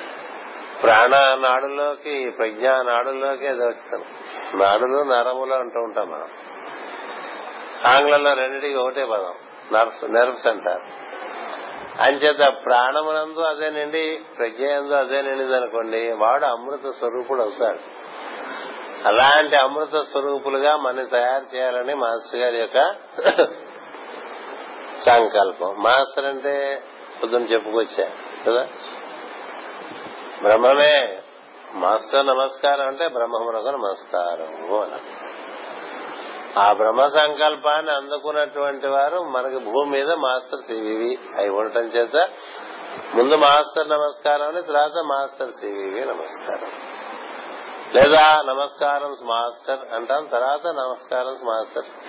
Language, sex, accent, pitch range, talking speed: Telugu, male, native, 120-145 Hz, 85 wpm